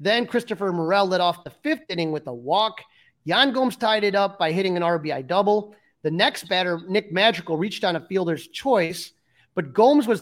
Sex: male